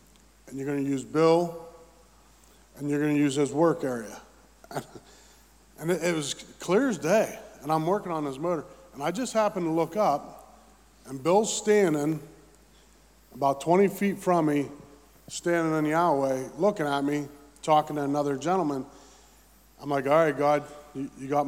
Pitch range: 140-165 Hz